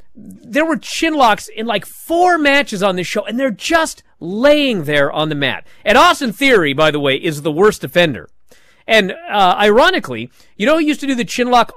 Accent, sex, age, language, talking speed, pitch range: American, male, 40-59, English, 210 wpm, 165-270 Hz